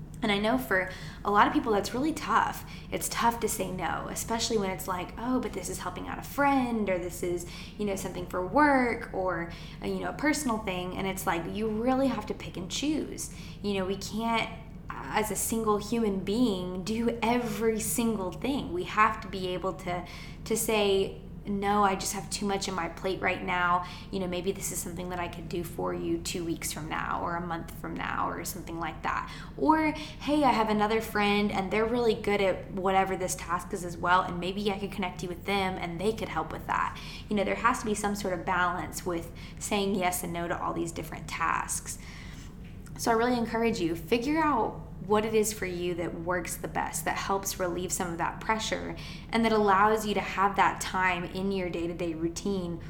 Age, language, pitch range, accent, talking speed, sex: 10-29, English, 180-220 Hz, American, 220 wpm, female